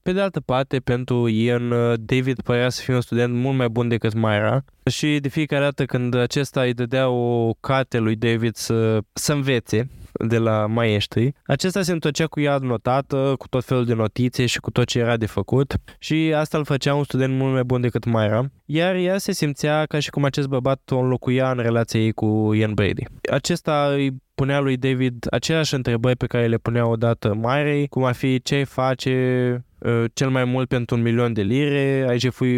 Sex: male